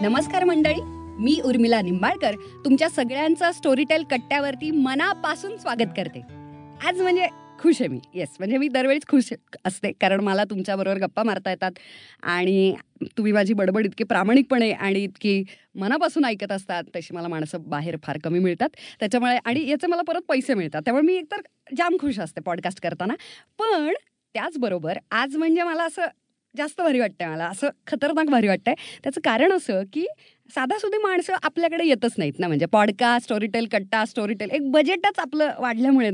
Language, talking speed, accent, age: Marathi, 160 wpm, native, 30-49